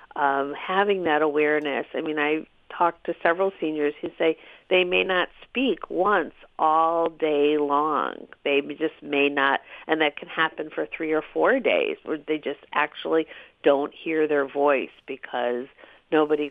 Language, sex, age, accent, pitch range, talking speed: English, female, 50-69, American, 140-165 Hz, 160 wpm